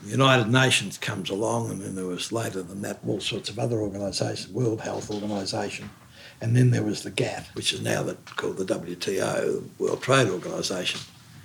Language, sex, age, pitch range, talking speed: English, male, 60-79, 115-140 Hz, 185 wpm